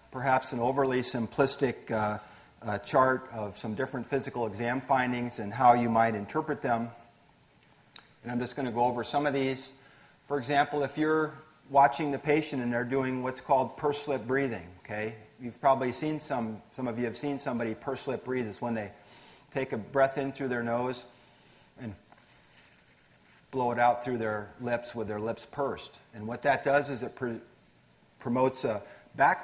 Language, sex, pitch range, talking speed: English, male, 110-135 Hz, 175 wpm